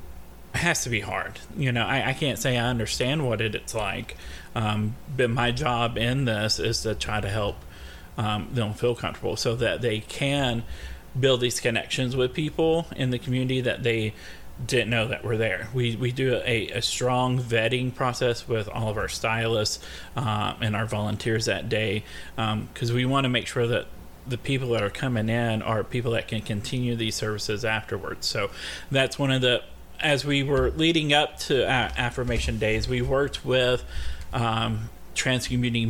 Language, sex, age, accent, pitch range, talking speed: English, male, 30-49, American, 110-130 Hz, 180 wpm